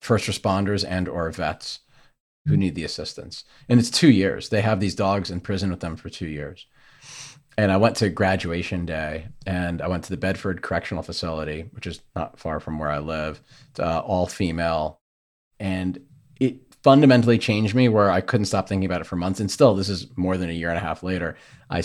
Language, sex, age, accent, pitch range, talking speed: English, male, 40-59, American, 85-115 Hz, 210 wpm